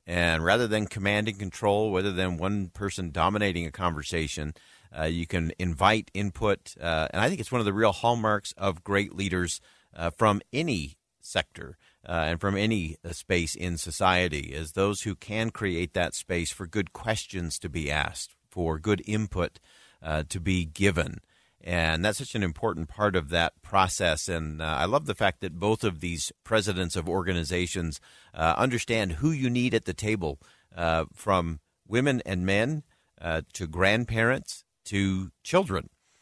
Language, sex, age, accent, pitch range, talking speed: English, male, 50-69, American, 85-105 Hz, 170 wpm